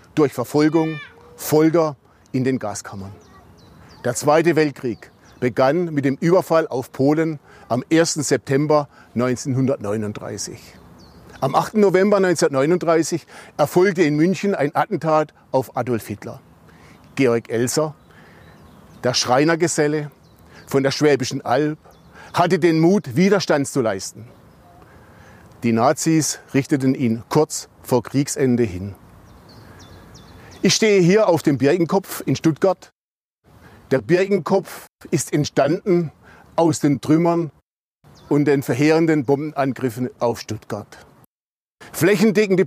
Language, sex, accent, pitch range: German, male, German, 125-165 Hz